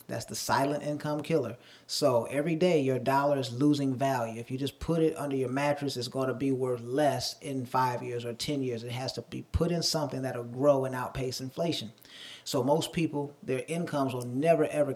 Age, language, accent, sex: 30-49, English, American, male